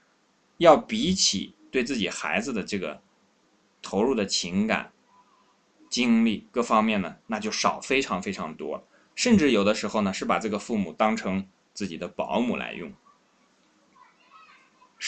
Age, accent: 20-39, native